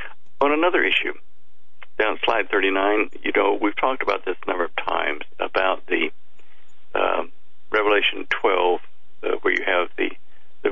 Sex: male